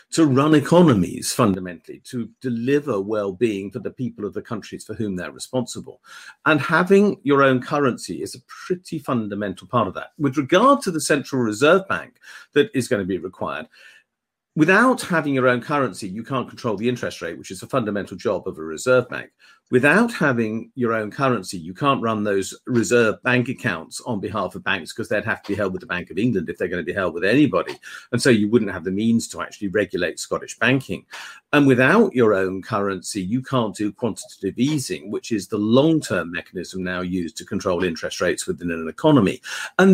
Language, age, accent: English, 50-69, British